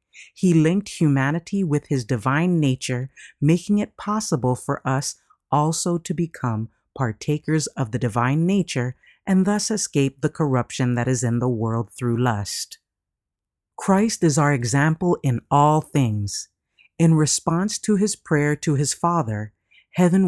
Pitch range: 130-180 Hz